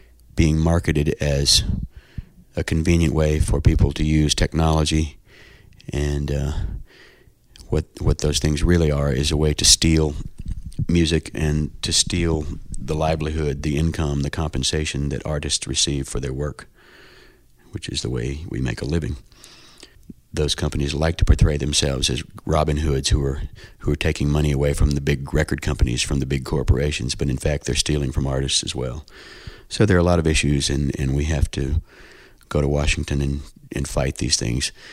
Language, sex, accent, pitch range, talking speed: English, male, American, 70-80 Hz, 175 wpm